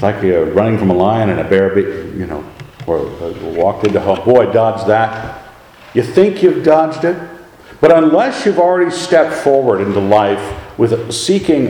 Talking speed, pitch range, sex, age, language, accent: 185 wpm, 110-165 Hz, male, 60-79, English, American